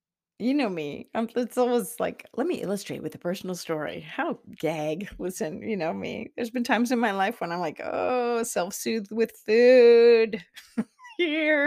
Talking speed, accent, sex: 170 wpm, American, female